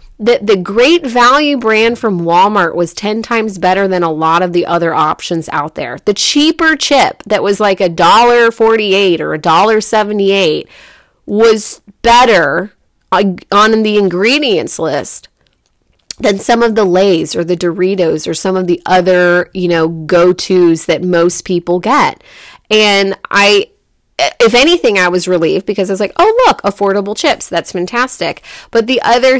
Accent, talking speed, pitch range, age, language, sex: American, 155 wpm, 185-225 Hz, 30-49, English, female